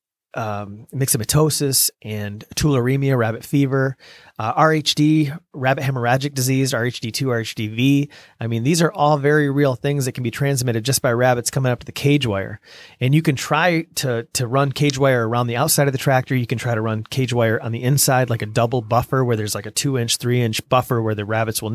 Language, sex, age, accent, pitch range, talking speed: English, male, 30-49, American, 115-140 Hz, 205 wpm